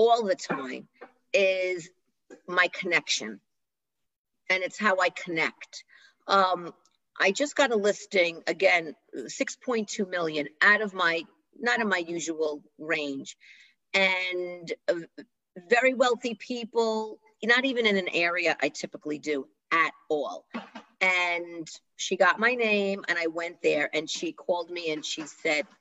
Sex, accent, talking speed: female, American, 135 wpm